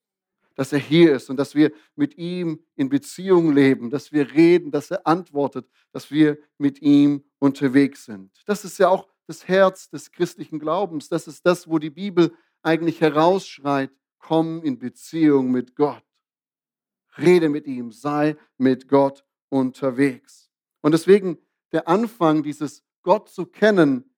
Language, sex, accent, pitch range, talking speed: German, male, German, 135-165 Hz, 150 wpm